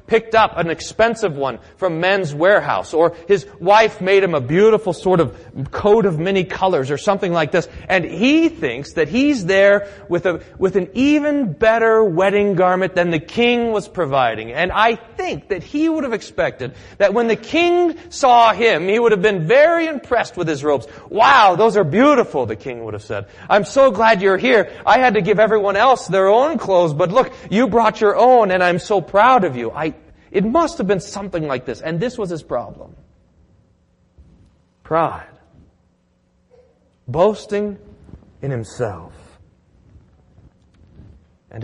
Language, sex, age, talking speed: English, male, 30-49, 170 wpm